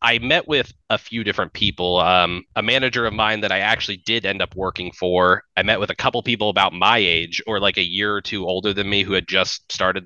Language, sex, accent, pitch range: English, male, American, 90-105 Hz